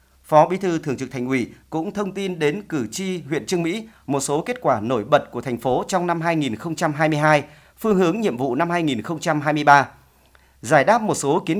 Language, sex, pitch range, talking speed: Vietnamese, male, 140-185 Hz, 200 wpm